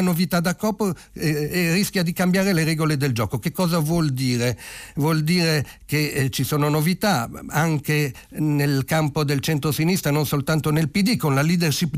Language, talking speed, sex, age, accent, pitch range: Italian, 170 wpm, male, 50-69, native, 125-175 Hz